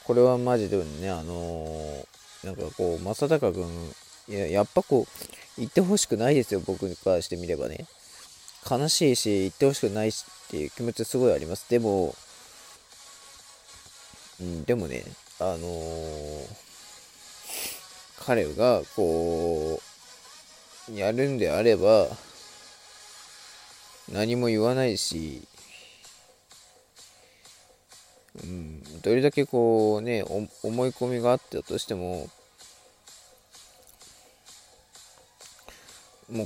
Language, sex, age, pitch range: Japanese, male, 20-39, 85-125 Hz